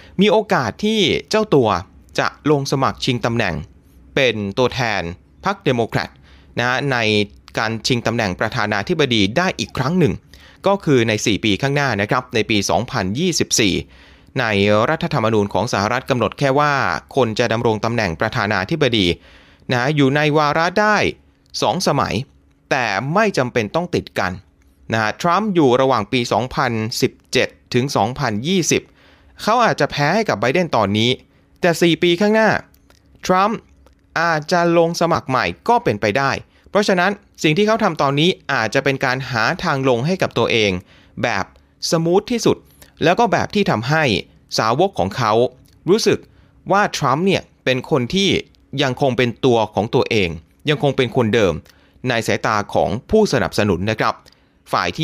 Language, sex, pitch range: Thai, male, 105-165 Hz